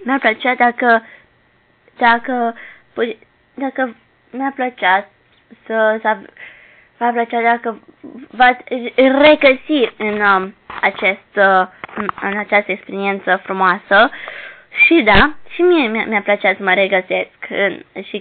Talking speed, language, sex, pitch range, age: 110 wpm, Romanian, female, 195-250 Hz, 20-39